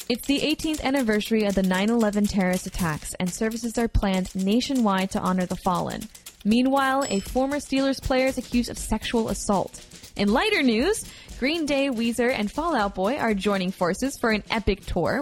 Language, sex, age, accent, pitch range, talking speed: English, female, 10-29, American, 200-265 Hz, 180 wpm